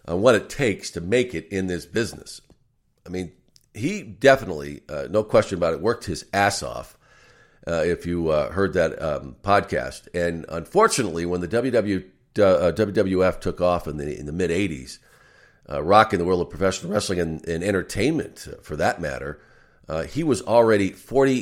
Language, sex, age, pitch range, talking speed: English, male, 50-69, 85-100 Hz, 180 wpm